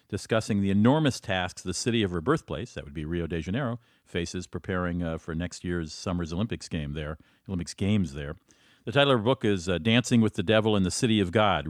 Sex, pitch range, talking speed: male, 90-115 Hz, 225 wpm